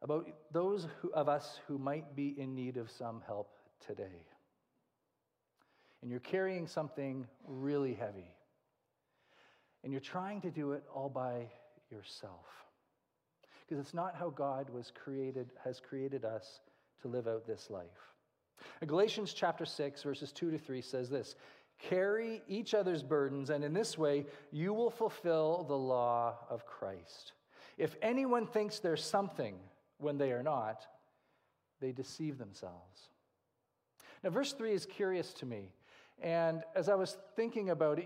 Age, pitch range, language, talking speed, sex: 40-59, 135-180 Hz, English, 150 wpm, male